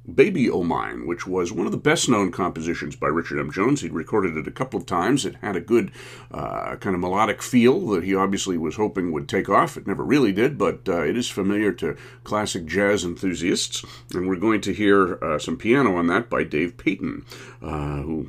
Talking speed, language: 215 wpm, English